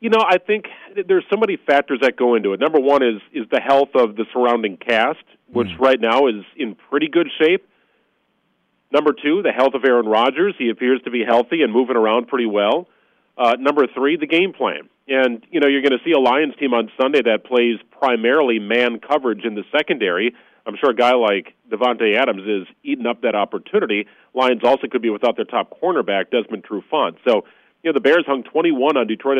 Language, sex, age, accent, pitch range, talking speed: English, male, 40-59, American, 120-150 Hz, 210 wpm